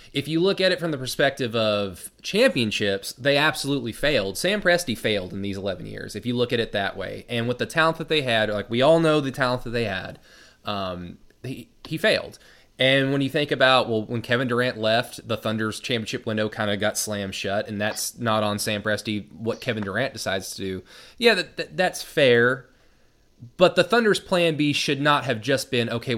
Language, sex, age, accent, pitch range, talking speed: English, male, 20-39, American, 105-140 Hz, 215 wpm